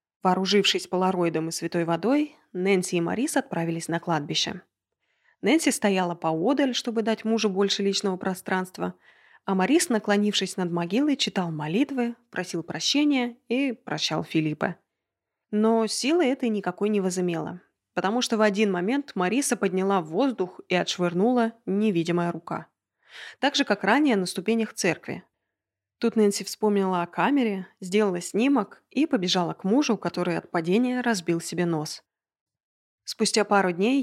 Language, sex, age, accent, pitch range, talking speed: Russian, female, 20-39, native, 180-235 Hz, 140 wpm